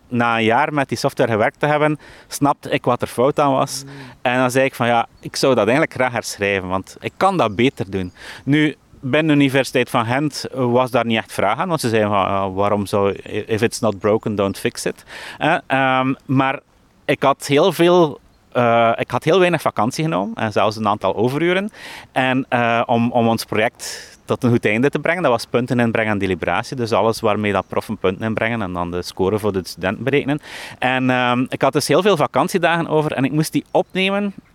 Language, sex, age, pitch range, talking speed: English, male, 30-49, 110-145 Hz, 215 wpm